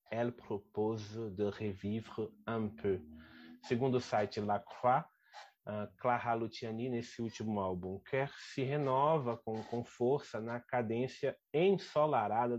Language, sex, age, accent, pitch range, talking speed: Portuguese, male, 30-49, Brazilian, 105-125 Hz, 125 wpm